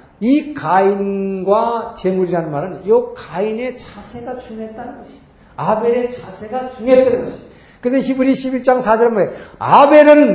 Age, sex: 50-69, male